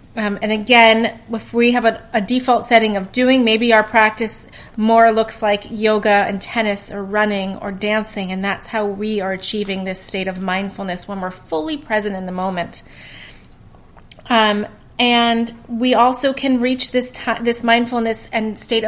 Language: English